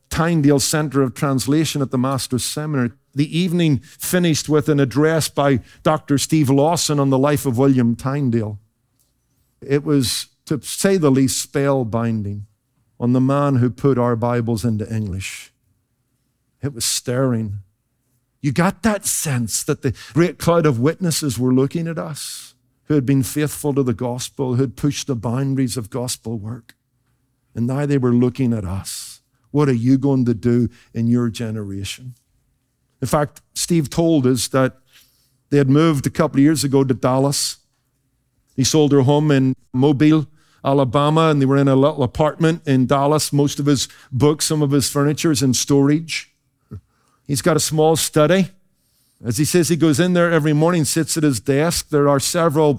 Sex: male